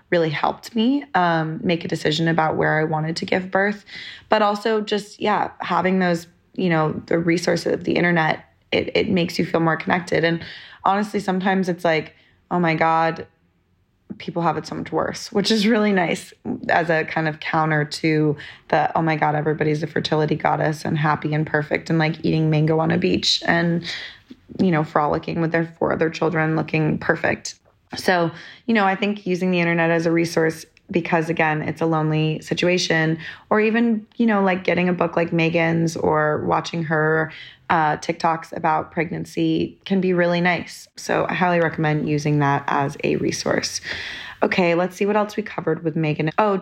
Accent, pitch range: American, 155-180 Hz